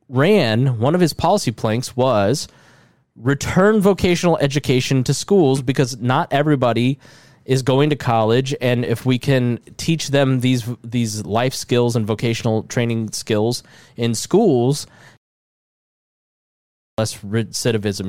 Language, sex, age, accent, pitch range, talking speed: English, male, 20-39, American, 120-175 Hz, 125 wpm